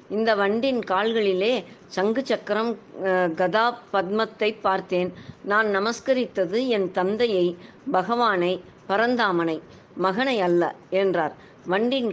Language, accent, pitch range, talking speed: Tamil, native, 185-230 Hz, 90 wpm